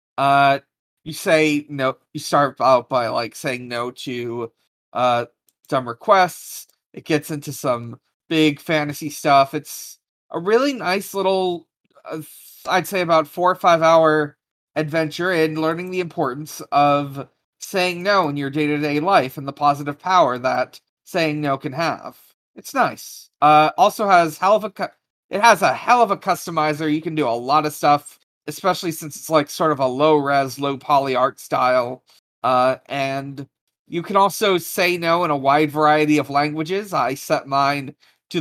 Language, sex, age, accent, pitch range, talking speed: English, male, 30-49, American, 140-175 Hz, 165 wpm